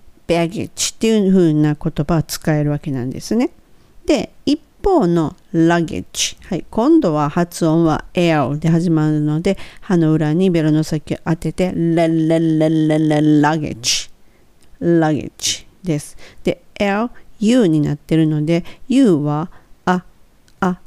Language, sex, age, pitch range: Japanese, female, 50-69, 155-205 Hz